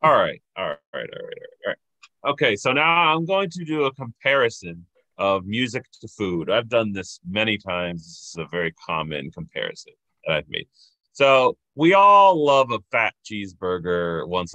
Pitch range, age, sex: 90-120 Hz, 30-49, male